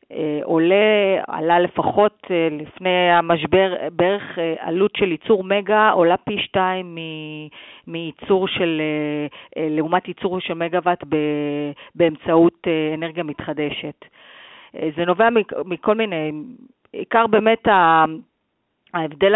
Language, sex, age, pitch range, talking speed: Hebrew, female, 40-59, 155-190 Hz, 95 wpm